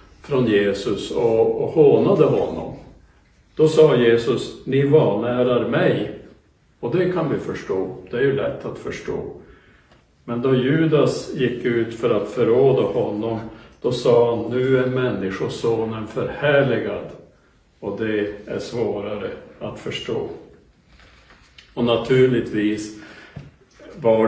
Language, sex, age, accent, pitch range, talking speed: Swedish, male, 60-79, Norwegian, 110-145 Hz, 115 wpm